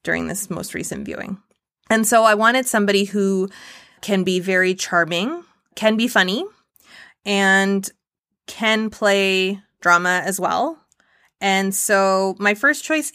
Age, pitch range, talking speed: 20-39, 190-235 Hz, 130 wpm